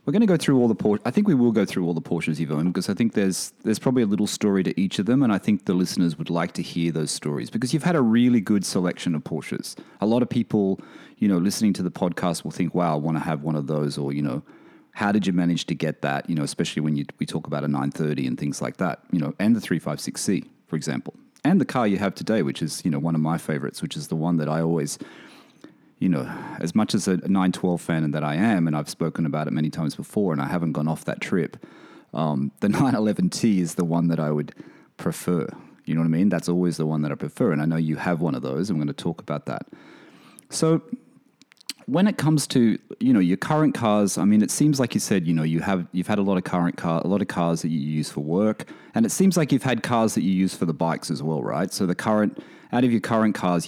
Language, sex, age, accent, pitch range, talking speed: English, male, 30-49, Australian, 80-110 Hz, 275 wpm